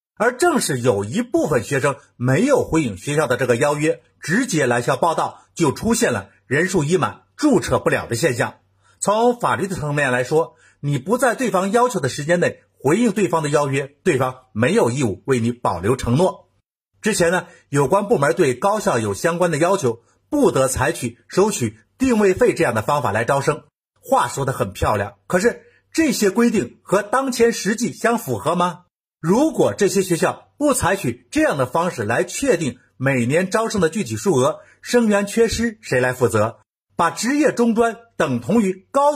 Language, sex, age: Chinese, male, 50-69